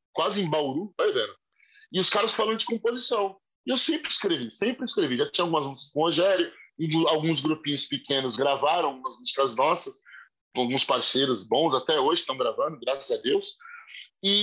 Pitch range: 175-285 Hz